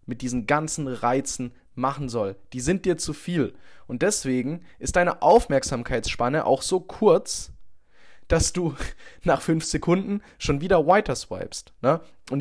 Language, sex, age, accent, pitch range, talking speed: English, male, 20-39, German, 115-155 Hz, 140 wpm